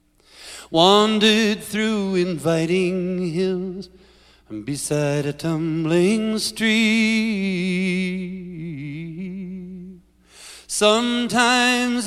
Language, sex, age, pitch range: English, male, 40-59, 155-205 Hz